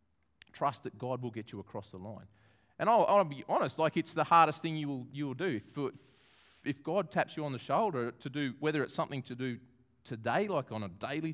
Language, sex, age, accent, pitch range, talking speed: English, male, 40-59, Australian, 105-160 Hz, 235 wpm